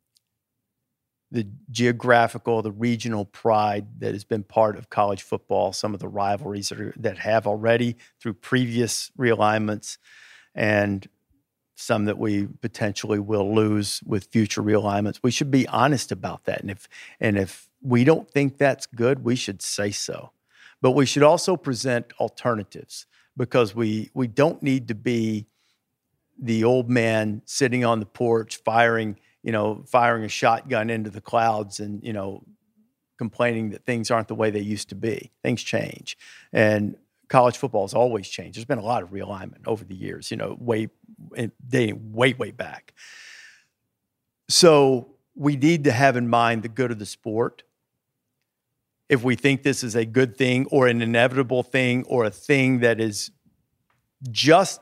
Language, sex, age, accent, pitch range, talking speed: English, male, 50-69, American, 105-130 Hz, 165 wpm